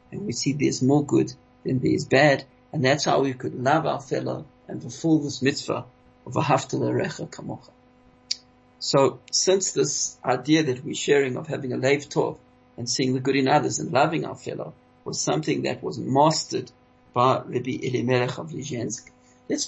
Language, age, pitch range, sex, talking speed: English, 50-69, 125-150 Hz, male, 175 wpm